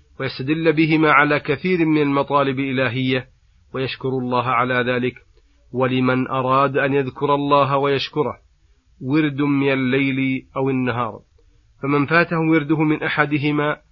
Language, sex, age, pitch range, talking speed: Arabic, male, 40-59, 125-145 Hz, 115 wpm